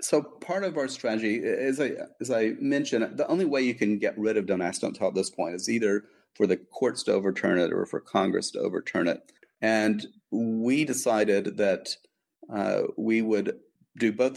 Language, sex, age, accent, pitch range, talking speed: English, male, 40-59, American, 95-115 Hz, 200 wpm